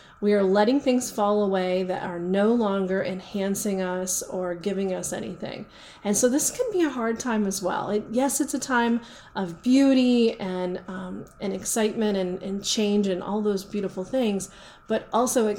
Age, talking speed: 30-49, 185 wpm